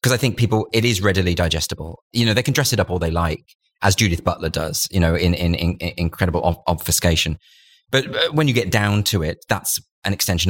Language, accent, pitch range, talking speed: English, British, 90-125 Hz, 225 wpm